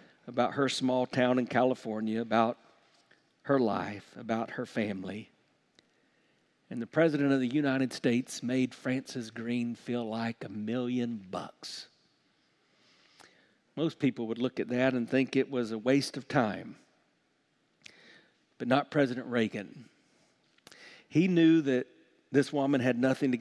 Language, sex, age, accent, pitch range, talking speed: English, male, 50-69, American, 115-145 Hz, 135 wpm